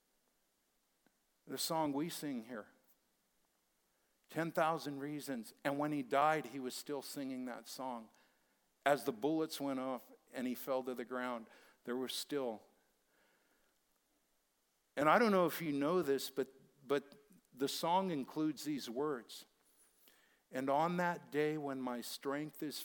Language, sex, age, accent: English, male, 50-69, American